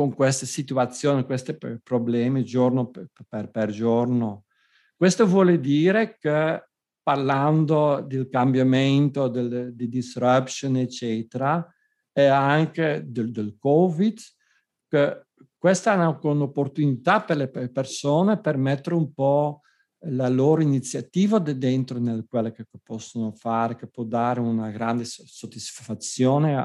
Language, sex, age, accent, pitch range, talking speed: Italian, male, 50-69, native, 120-155 Hz, 115 wpm